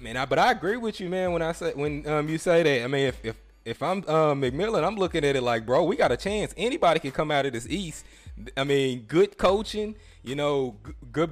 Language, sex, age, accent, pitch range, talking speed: English, male, 20-39, American, 135-180 Hz, 255 wpm